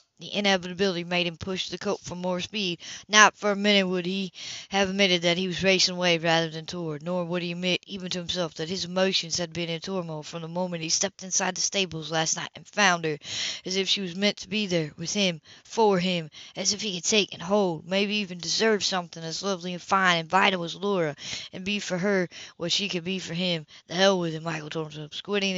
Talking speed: 240 wpm